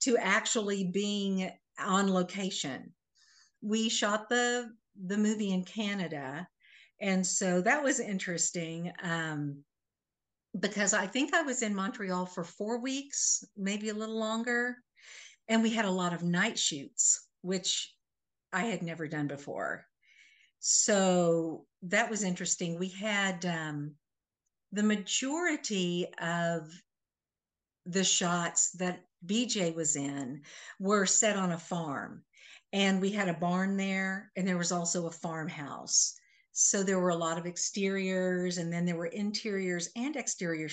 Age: 50-69